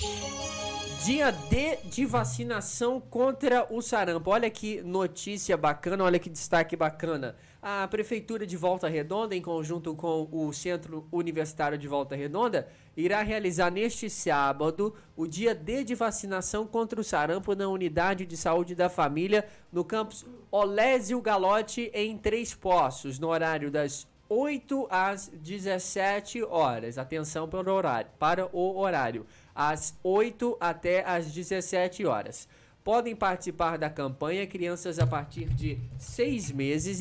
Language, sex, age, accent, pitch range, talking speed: Portuguese, male, 20-39, Brazilian, 155-205 Hz, 130 wpm